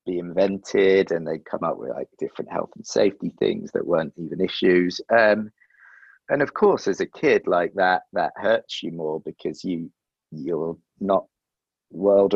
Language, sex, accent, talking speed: English, male, British, 170 wpm